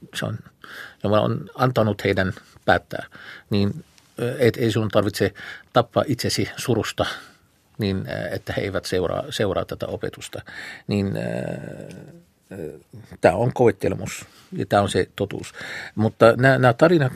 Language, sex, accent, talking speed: Finnish, male, native, 125 wpm